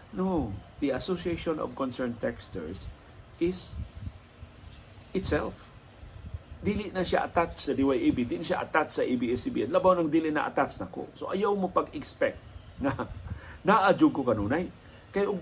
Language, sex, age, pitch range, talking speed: Filipino, male, 50-69, 110-165 Hz, 135 wpm